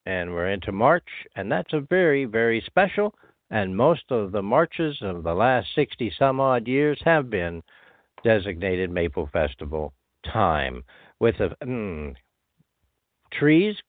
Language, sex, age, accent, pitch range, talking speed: English, male, 60-79, American, 95-130 Hz, 130 wpm